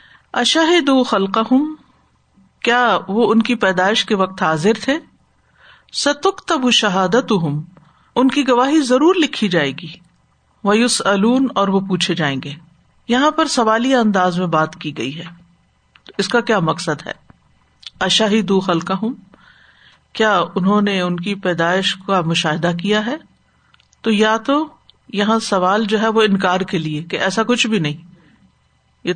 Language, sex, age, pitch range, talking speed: Urdu, female, 50-69, 180-230 Hz, 150 wpm